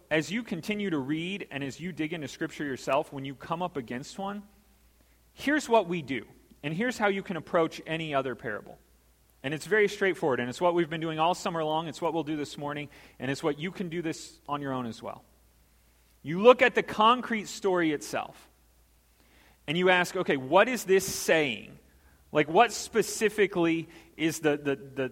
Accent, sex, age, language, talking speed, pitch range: American, male, 30-49, English, 200 wpm, 145-200 Hz